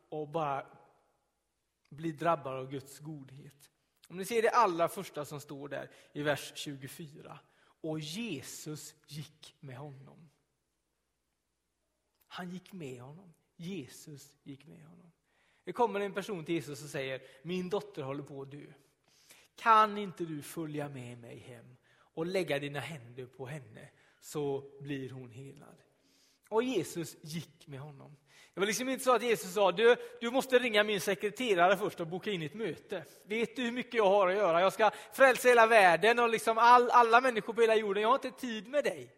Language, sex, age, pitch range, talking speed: Swedish, male, 30-49, 145-235 Hz, 175 wpm